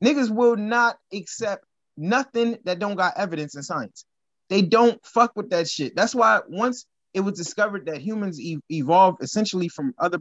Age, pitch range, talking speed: 20-39, 170-235 Hz, 175 wpm